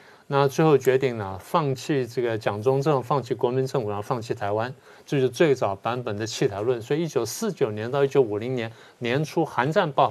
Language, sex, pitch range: Chinese, male, 120-145 Hz